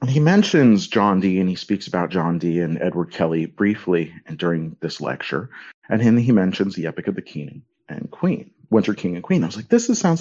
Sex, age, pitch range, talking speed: male, 40-59, 85-115 Hz, 225 wpm